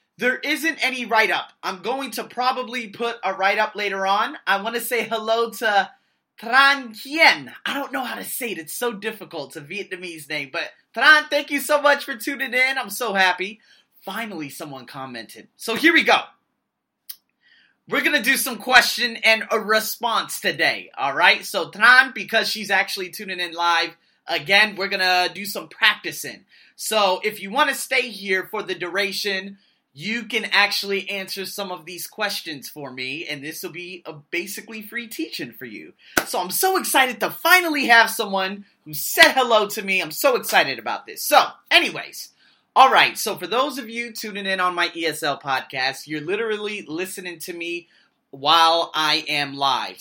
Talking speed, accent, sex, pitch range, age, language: 185 wpm, American, male, 180-245 Hz, 20-39, English